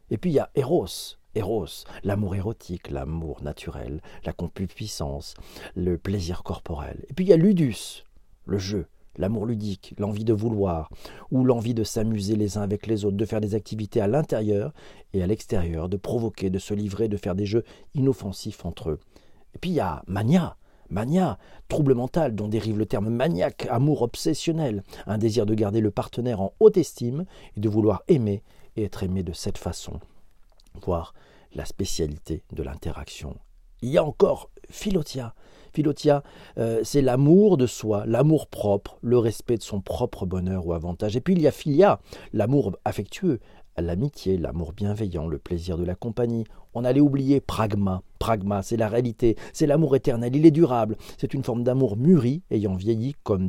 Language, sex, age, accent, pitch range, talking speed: French, male, 40-59, French, 95-125 Hz, 175 wpm